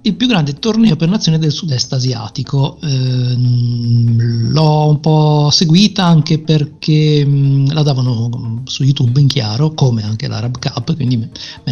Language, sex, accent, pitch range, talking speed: Italian, male, native, 125-160 Hz, 150 wpm